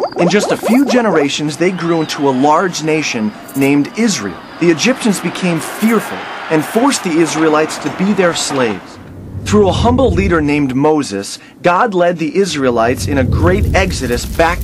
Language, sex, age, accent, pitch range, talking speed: English, male, 30-49, American, 135-190 Hz, 165 wpm